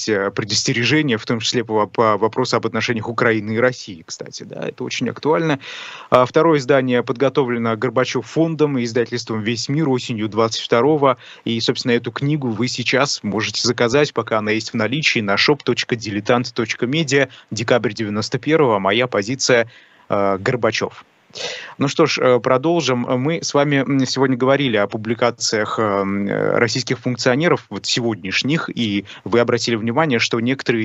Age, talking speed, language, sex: 20-39, 135 wpm, Russian, male